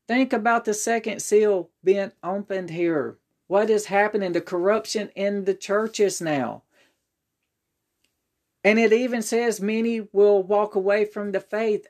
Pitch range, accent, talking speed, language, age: 180-210 Hz, American, 140 wpm, English, 40-59